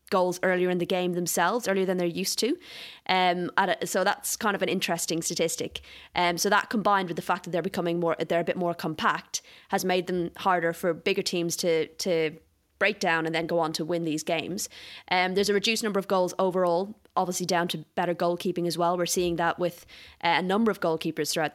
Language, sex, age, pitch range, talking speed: English, female, 20-39, 170-195 Hz, 225 wpm